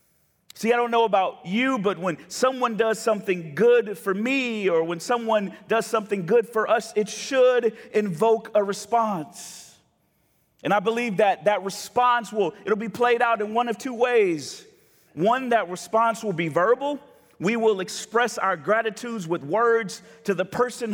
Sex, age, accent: male, 40-59, American